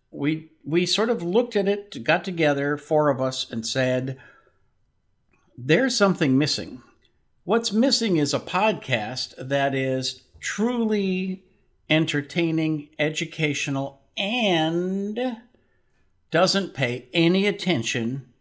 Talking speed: 105 wpm